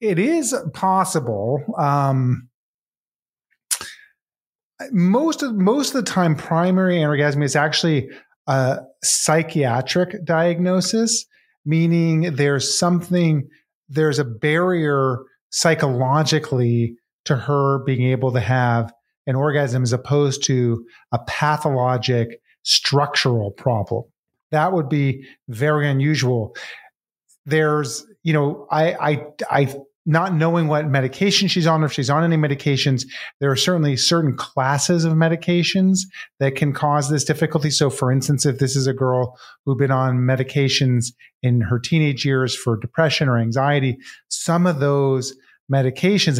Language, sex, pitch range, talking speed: English, male, 130-165 Hz, 130 wpm